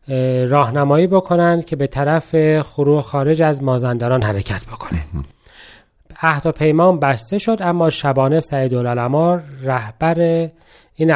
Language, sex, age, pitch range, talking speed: Persian, male, 40-59, 130-170 Hz, 110 wpm